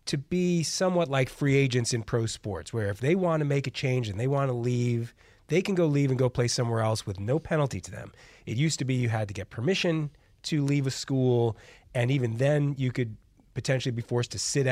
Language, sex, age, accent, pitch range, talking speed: English, male, 30-49, American, 110-140 Hz, 230 wpm